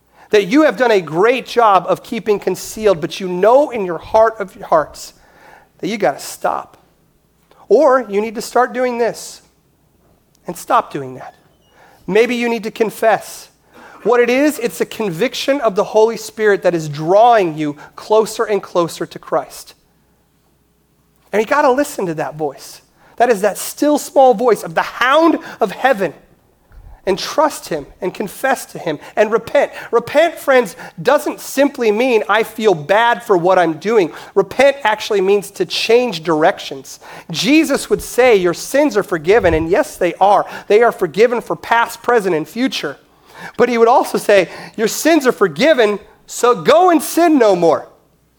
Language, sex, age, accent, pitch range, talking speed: English, male, 30-49, American, 195-260 Hz, 170 wpm